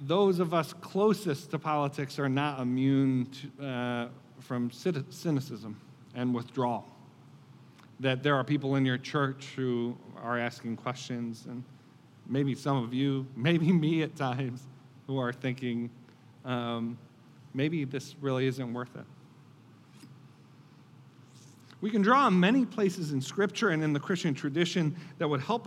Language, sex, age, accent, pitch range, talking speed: English, male, 40-59, American, 135-185 Hz, 140 wpm